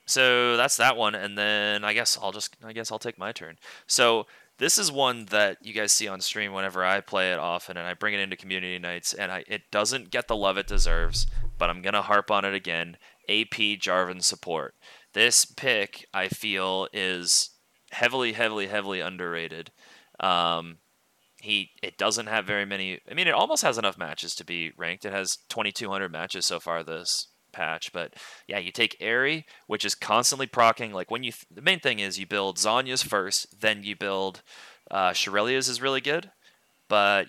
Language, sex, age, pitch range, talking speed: English, male, 30-49, 90-110 Hz, 195 wpm